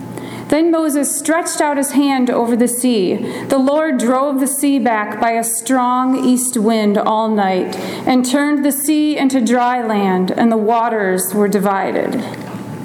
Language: English